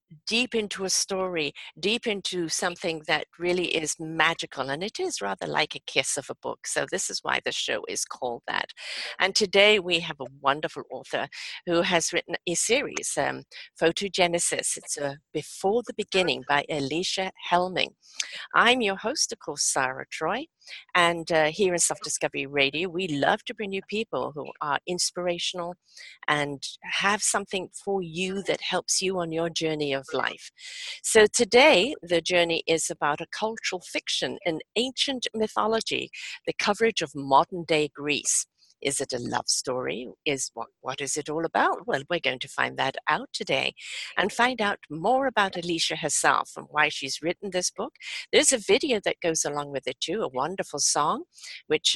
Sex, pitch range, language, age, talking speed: female, 155-210 Hz, English, 50-69, 175 wpm